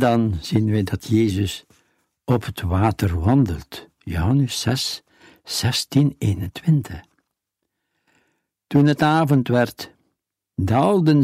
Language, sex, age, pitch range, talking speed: Dutch, male, 60-79, 105-150 Hz, 95 wpm